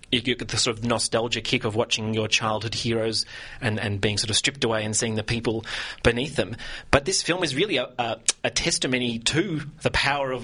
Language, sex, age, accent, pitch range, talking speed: English, male, 30-49, Australian, 115-140 Hz, 215 wpm